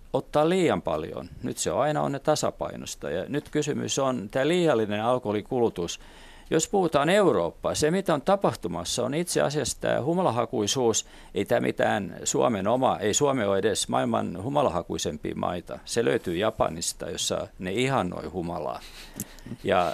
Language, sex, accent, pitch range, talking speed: Finnish, male, native, 105-140 Hz, 145 wpm